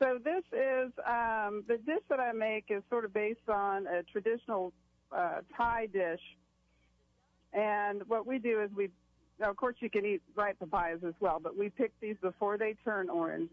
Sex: female